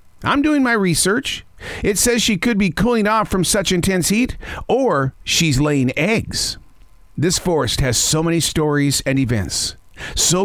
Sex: male